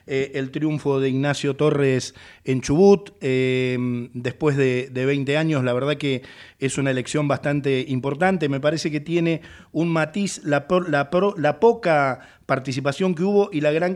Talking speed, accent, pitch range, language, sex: 170 wpm, Argentinian, 135-170 Hz, Italian, male